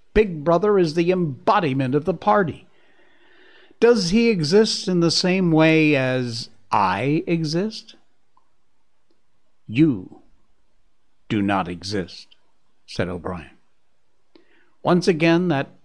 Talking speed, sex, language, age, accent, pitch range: 100 wpm, male, English, 60-79, American, 120-170 Hz